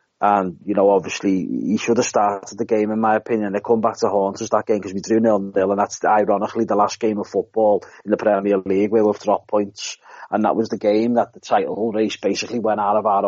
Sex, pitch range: male, 100-115 Hz